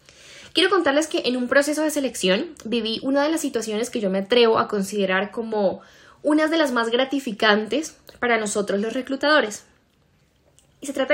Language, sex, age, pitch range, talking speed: Spanish, female, 10-29, 210-270 Hz, 170 wpm